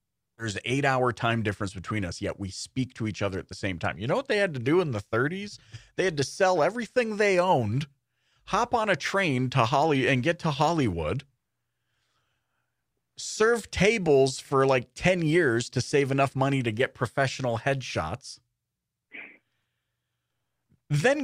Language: English